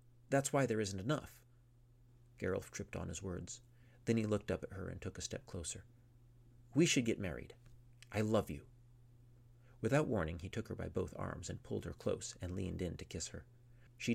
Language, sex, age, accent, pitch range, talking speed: English, male, 40-59, American, 90-120 Hz, 200 wpm